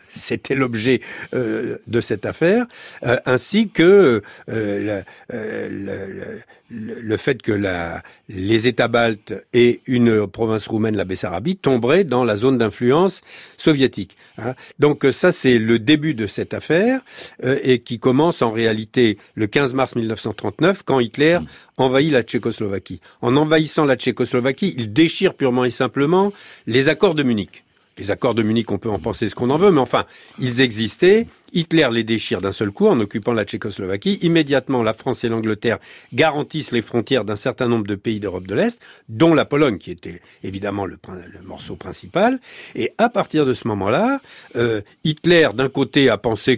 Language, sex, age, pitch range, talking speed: French, male, 60-79, 110-155 Hz, 165 wpm